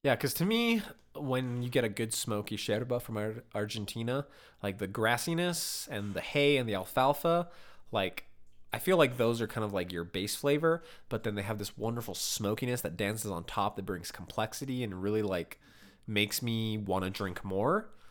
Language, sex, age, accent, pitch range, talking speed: English, male, 20-39, American, 100-140 Hz, 190 wpm